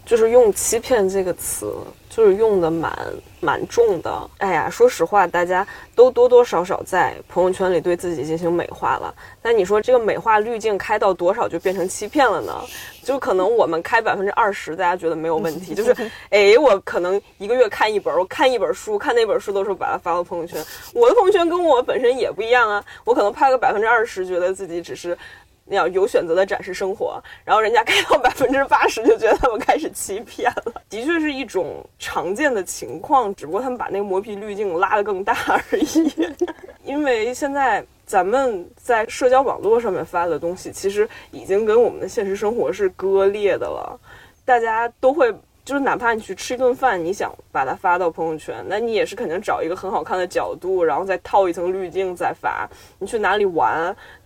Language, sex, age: Chinese, female, 20-39